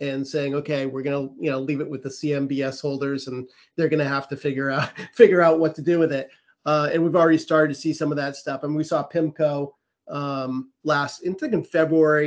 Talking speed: 245 wpm